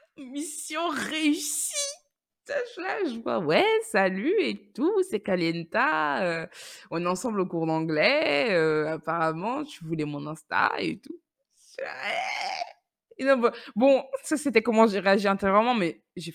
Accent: French